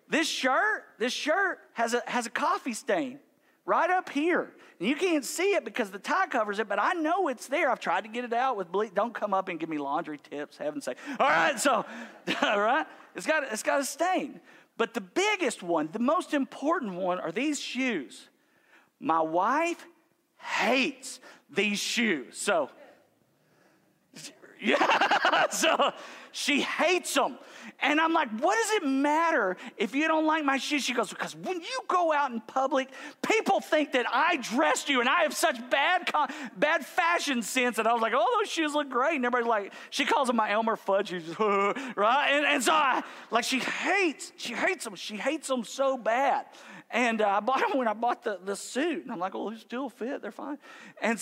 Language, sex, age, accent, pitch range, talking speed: English, male, 40-59, American, 225-310 Hz, 205 wpm